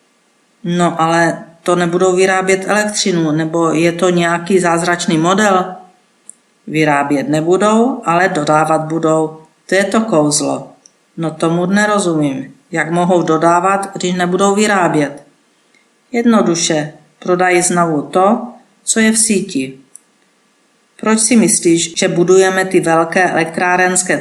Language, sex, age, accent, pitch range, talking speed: Czech, female, 50-69, native, 165-205 Hz, 115 wpm